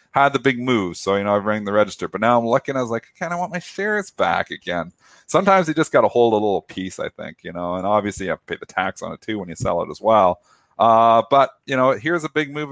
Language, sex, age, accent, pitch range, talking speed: English, male, 40-59, American, 95-125 Hz, 295 wpm